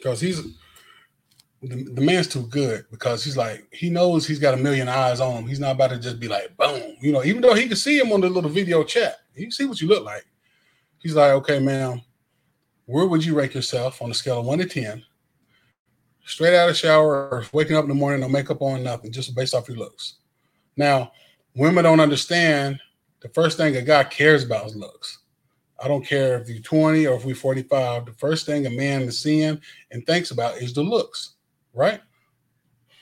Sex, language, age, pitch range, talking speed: male, English, 20-39, 125-155 Hz, 215 wpm